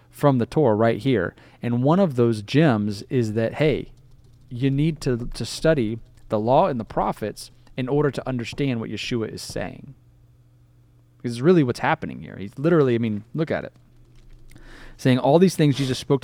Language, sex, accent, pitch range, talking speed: English, male, American, 115-140 Hz, 180 wpm